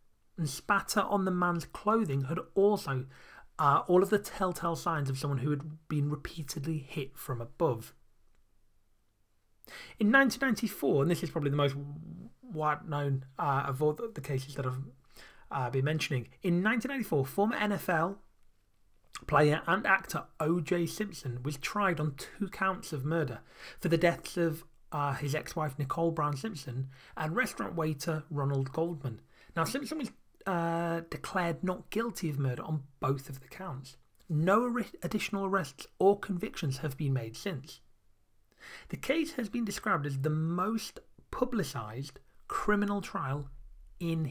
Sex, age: male, 30-49